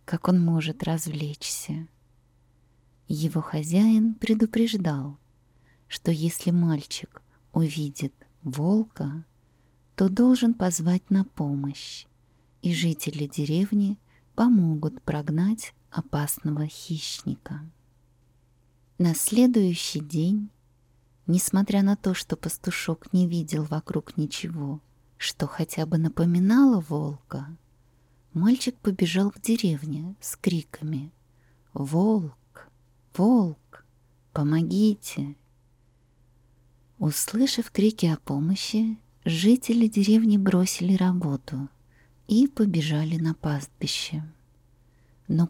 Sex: female